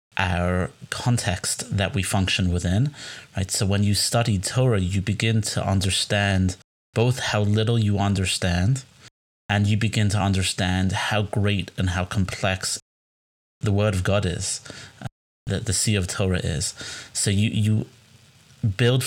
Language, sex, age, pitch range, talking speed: English, male, 30-49, 95-110 Hz, 150 wpm